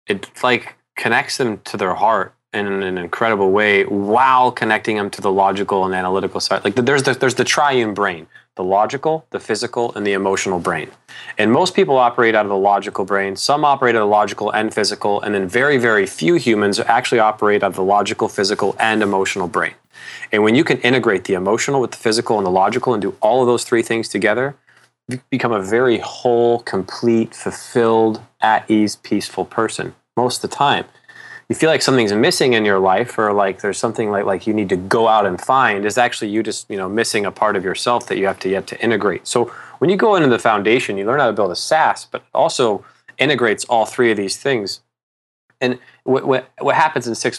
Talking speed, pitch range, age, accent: 215 wpm, 100-120 Hz, 30-49, American